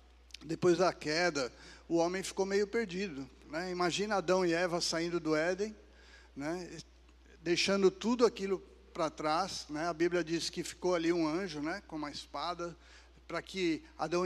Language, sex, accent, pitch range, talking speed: Portuguese, male, Brazilian, 150-185 Hz, 160 wpm